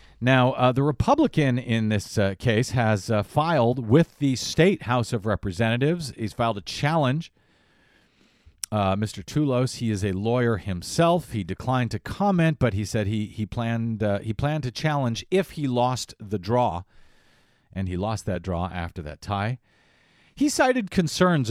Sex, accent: male, American